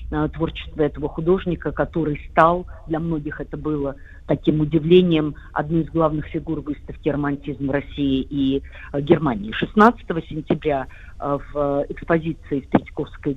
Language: Russian